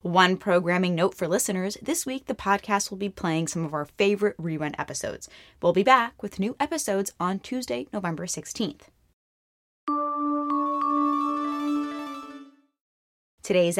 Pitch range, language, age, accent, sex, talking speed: 170-230 Hz, English, 20-39, American, female, 125 wpm